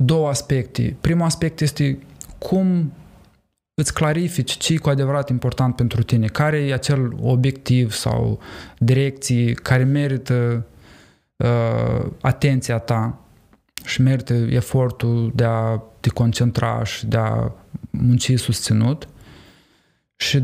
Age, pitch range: 20-39, 120-140 Hz